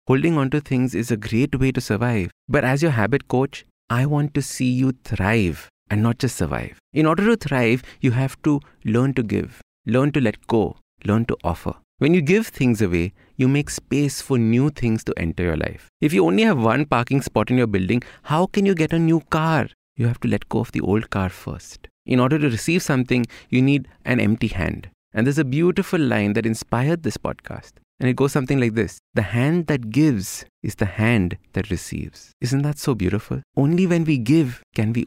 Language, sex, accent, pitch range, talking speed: English, male, Indian, 110-150 Hz, 220 wpm